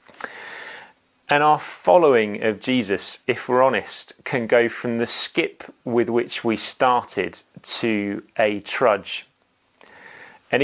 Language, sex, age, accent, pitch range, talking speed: English, male, 30-49, British, 105-145 Hz, 120 wpm